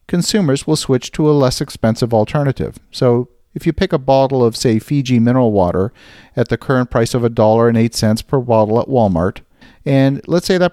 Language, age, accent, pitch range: English, 50-69, American, 115-150 Hz